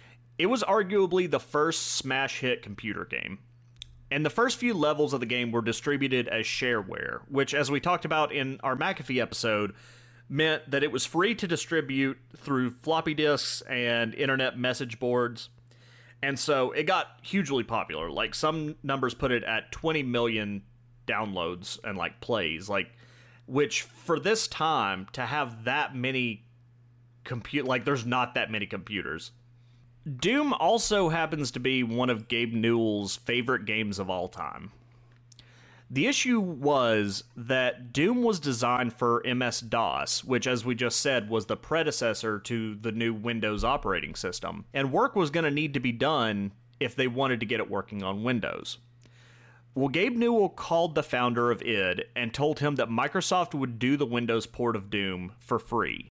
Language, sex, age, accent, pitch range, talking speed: English, male, 30-49, American, 120-145 Hz, 165 wpm